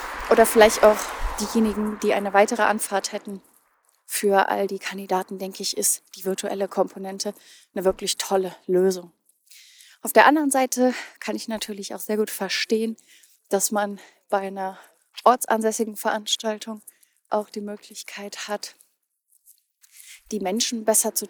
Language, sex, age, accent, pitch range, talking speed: German, female, 30-49, German, 200-235 Hz, 135 wpm